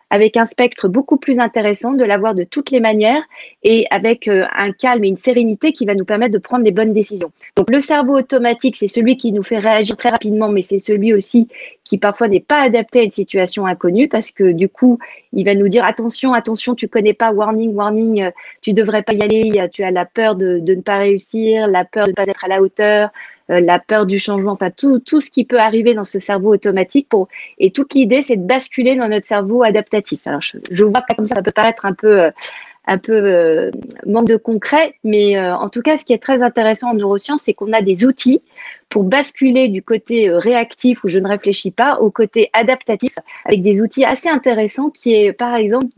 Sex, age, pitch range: female, 30-49, 200-245 Hz